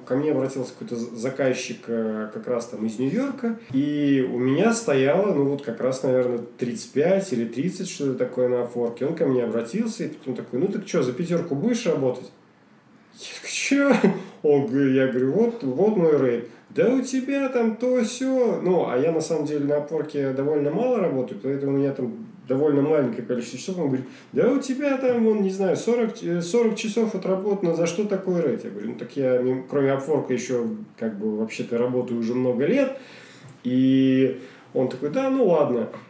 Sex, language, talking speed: male, Russian, 185 wpm